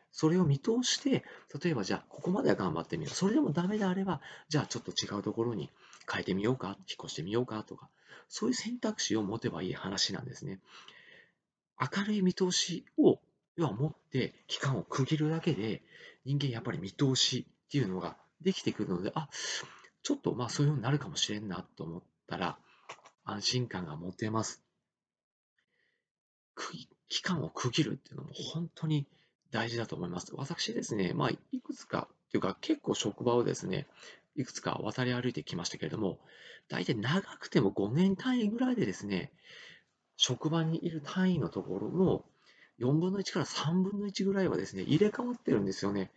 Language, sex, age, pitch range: Japanese, male, 40-59, 120-180 Hz